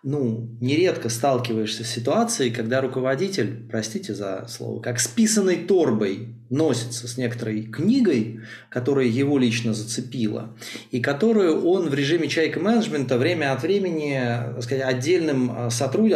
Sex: male